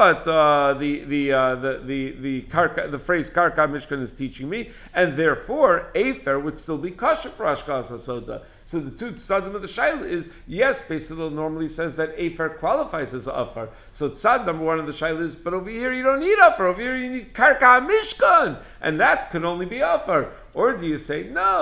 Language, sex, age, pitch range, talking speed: English, male, 50-69, 145-215 Hz, 205 wpm